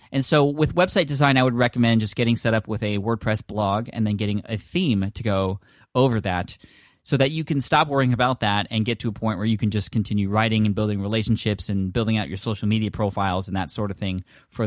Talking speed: 245 wpm